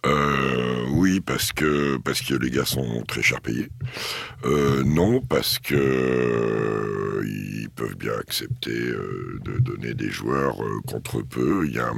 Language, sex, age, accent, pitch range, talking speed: French, male, 60-79, French, 65-80 Hz, 165 wpm